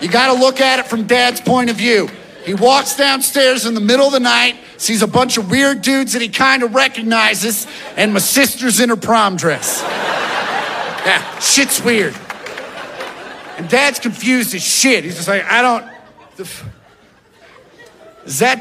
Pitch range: 150-240 Hz